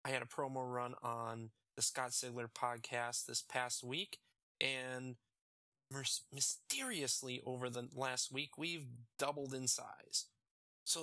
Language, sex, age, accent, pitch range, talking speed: English, male, 20-39, American, 115-130 Hz, 130 wpm